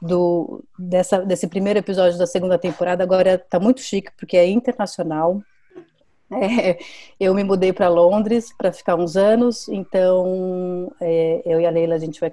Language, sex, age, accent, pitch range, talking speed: Portuguese, female, 30-49, Brazilian, 175-210 Hz, 165 wpm